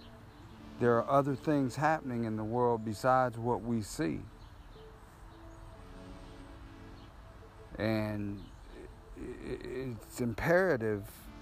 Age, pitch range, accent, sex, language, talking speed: 50-69, 110-135 Hz, American, male, English, 80 wpm